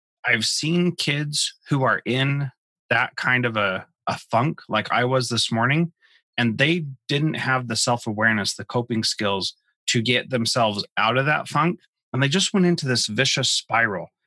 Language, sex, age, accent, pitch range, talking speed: English, male, 30-49, American, 115-140 Hz, 175 wpm